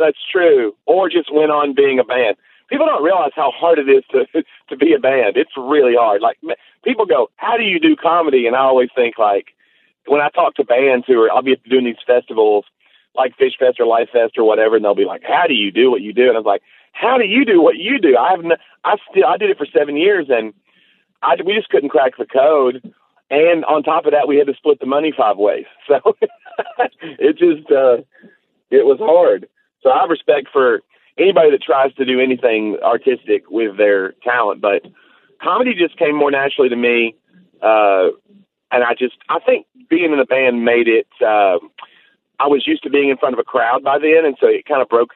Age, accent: 40-59, American